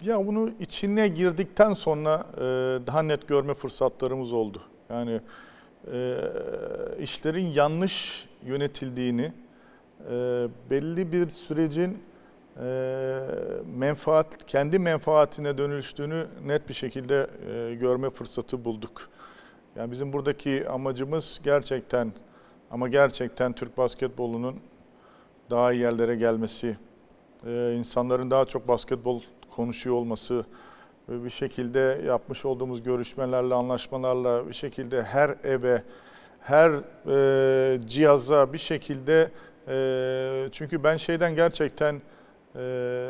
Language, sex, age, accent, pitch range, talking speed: Turkish, male, 50-69, native, 125-150 Hz, 95 wpm